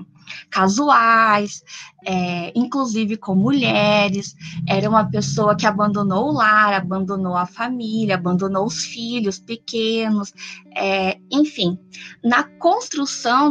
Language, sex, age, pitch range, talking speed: Portuguese, female, 20-39, 190-245 Hz, 100 wpm